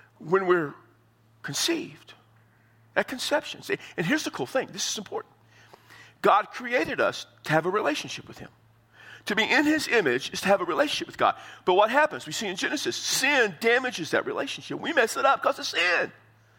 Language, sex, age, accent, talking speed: English, male, 50-69, American, 190 wpm